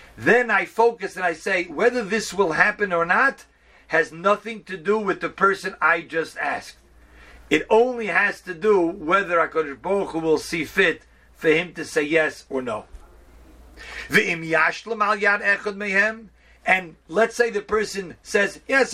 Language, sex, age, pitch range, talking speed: English, male, 50-69, 170-220 Hz, 150 wpm